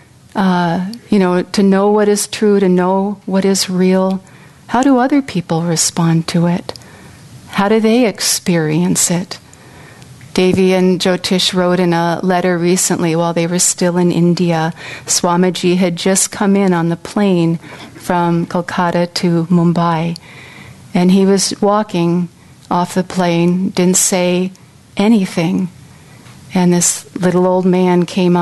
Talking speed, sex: 140 wpm, female